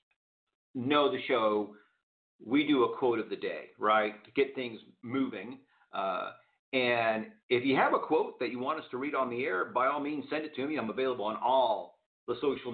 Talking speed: 205 wpm